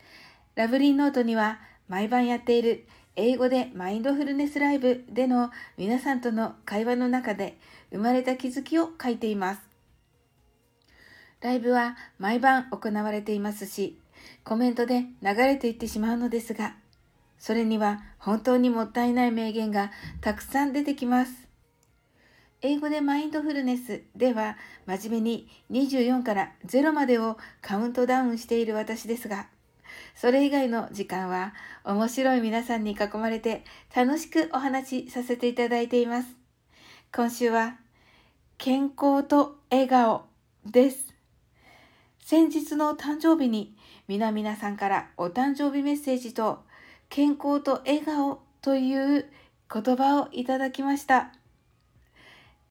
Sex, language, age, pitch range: female, Japanese, 60-79, 220-270 Hz